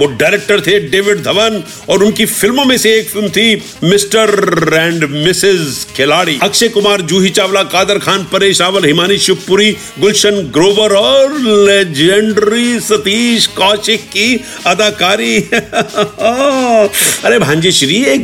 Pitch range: 180-225 Hz